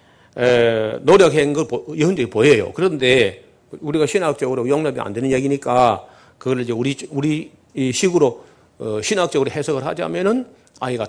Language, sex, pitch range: Korean, male, 125-195 Hz